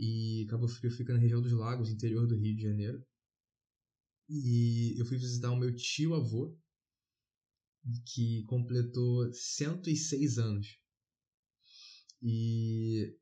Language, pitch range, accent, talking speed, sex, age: Portuguese, 110-130 Hz, Brazilian, 115 wpm, male, 20-39